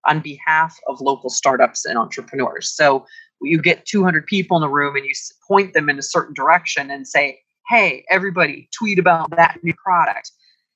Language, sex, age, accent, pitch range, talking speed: English, female, 30-49, American, 145-200 Hz, 180 wpm